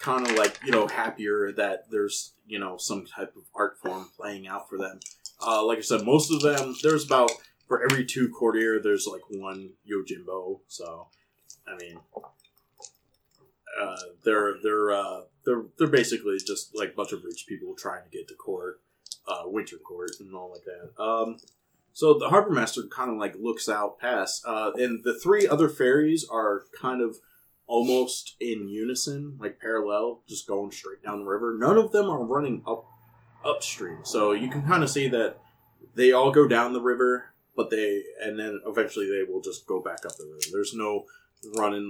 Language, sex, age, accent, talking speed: English, male, 20-39, American, 190 wpm